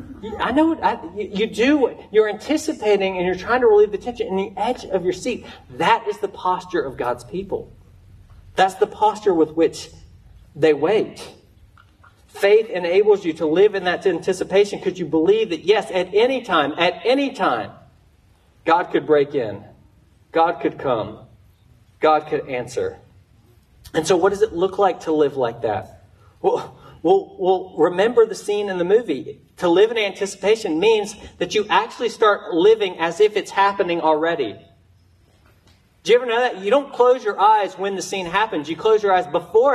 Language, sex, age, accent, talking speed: English, male, 40-59, American, 180 wpm